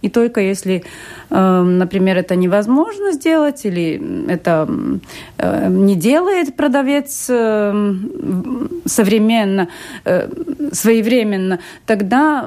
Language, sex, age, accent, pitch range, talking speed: Russian, female, 30-49, native, 190-255 Hz, 70 wpm